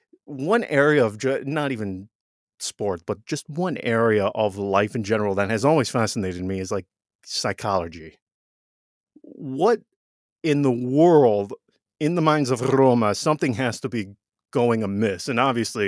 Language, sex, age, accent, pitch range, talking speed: English, male, 30-49, American, 110-150 Hz, 145 wpm